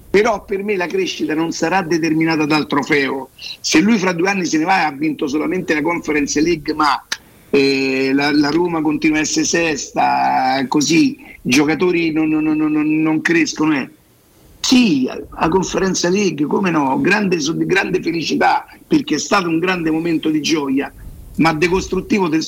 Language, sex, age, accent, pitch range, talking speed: Italian, male, 50-69, native, 150-205 Hz, 165 wpm